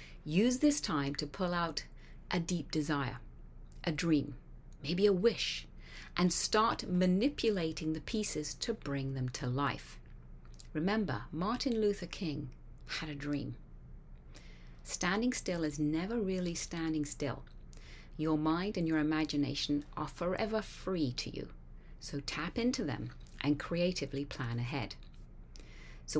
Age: 40-59